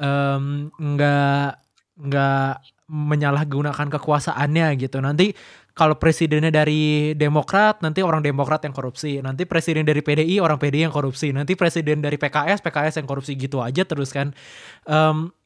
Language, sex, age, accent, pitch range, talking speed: Indonesian, male, 20-39, native, 140-165 Hz, 140 wpm